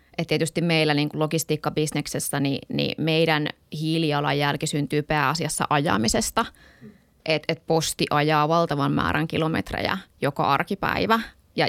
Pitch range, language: 150-170 Hz, Finnish